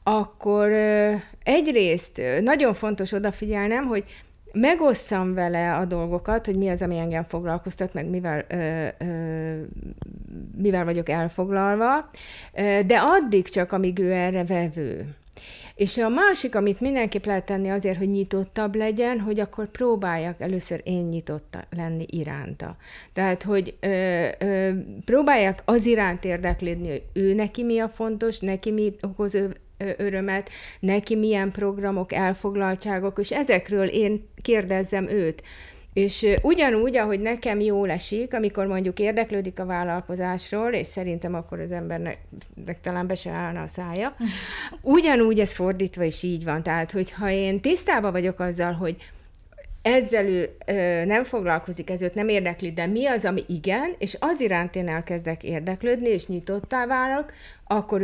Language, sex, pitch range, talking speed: Hungarian, female, 175-215 Hz, 135 wpm